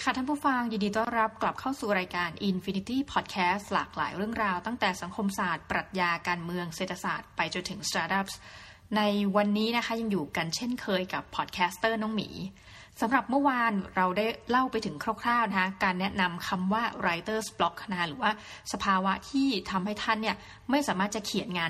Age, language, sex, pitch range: 20-39, Thai, female, 185-225 Hz